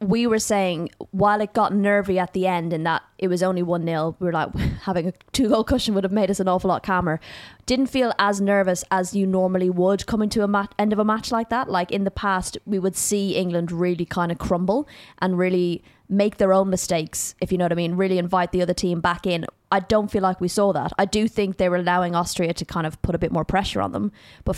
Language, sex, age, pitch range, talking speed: English, female, 20-39, 175-195 Hz, 260 wpm